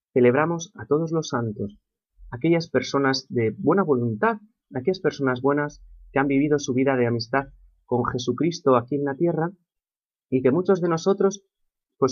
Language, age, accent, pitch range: Spanish, 30-49, Spanish, 120-145 Hz